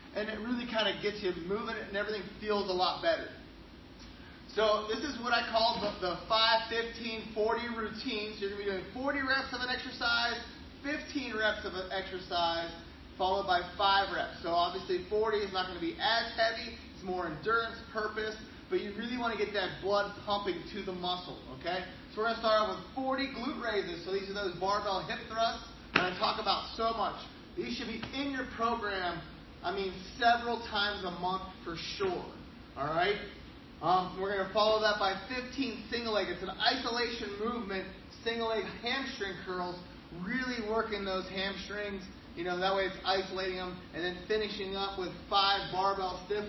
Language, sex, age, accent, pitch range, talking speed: English, male, 30-49, American, 190-230 Hz, 190 wpm